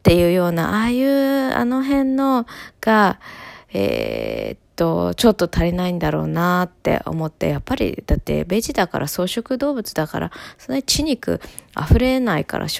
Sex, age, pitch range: female, 20-39, 155-195 Hz